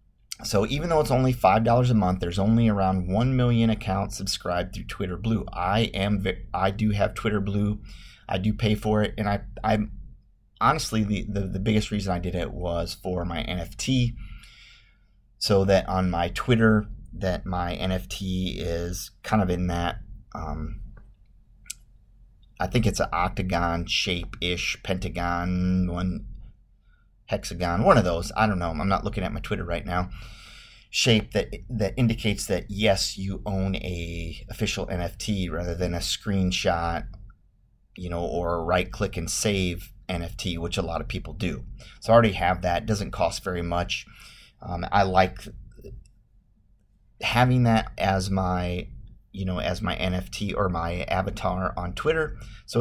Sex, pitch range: male, 90-110 Hz